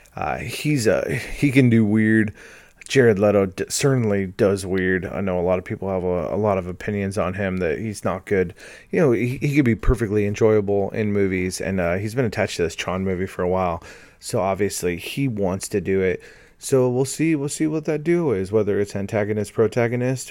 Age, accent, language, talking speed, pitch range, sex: 30-49, American, English, 215 wpm, 95-125 Hz, male